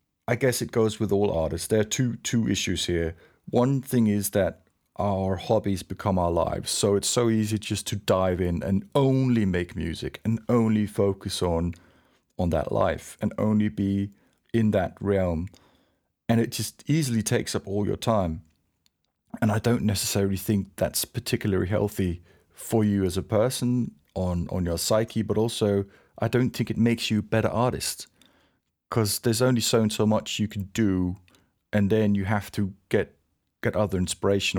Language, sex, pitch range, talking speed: English, male, 90-110 Hz, 180 wpm